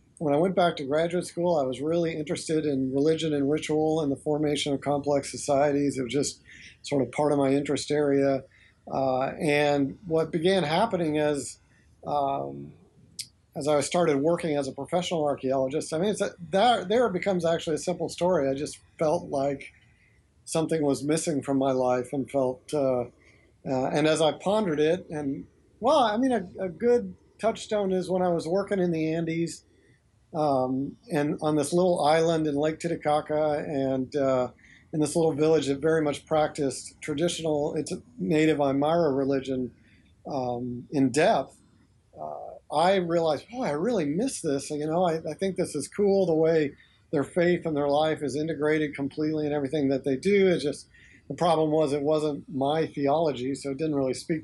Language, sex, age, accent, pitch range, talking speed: English, male, 50-69, American, 140-165 Hz, 185 wpm